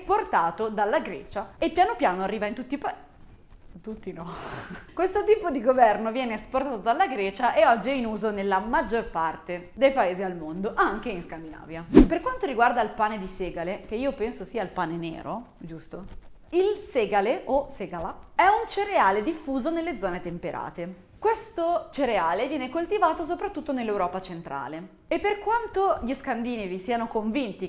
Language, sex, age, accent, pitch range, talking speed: Italian, female, 30-49, native, 195-320 Hz, 165 wpm